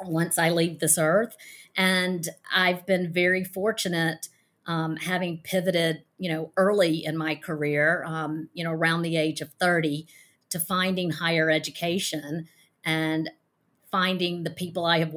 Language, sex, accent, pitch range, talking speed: English, female, American, 155-175 Hz, 145 wpm